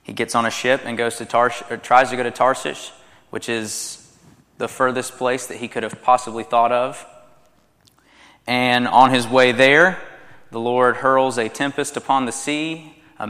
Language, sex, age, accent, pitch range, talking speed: English, male, 20-39, American, 115-130 Hz, 185 wpm